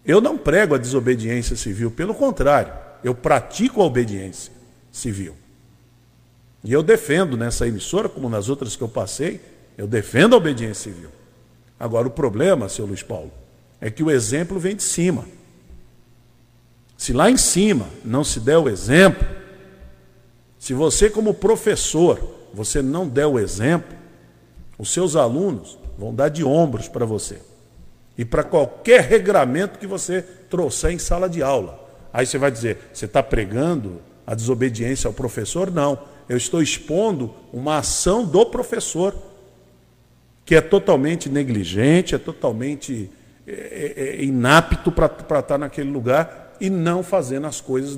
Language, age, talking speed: Portuguese, 50-69, 145 wpm